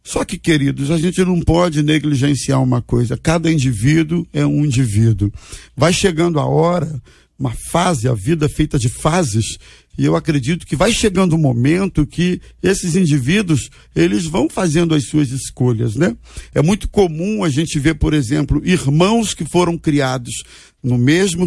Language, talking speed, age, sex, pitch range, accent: Portuguese, 165 wpm, 50-69, male, 145-185 Hz, Brazilian